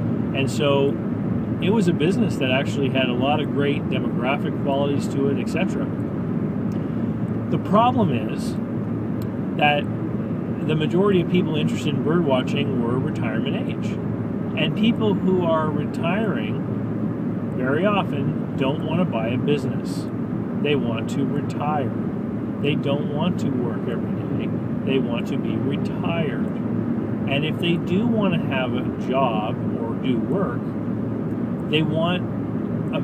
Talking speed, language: 135 wpm, English